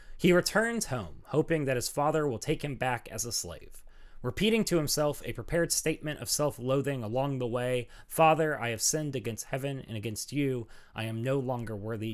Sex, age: male, 30-49